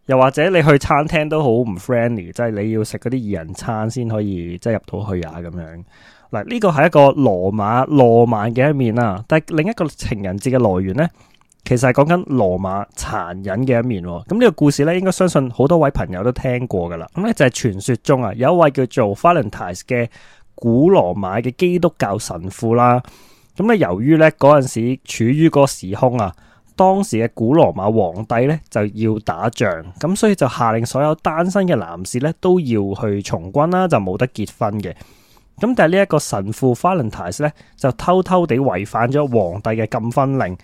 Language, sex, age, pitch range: Chinese, male, 20-39, 105-150 Hz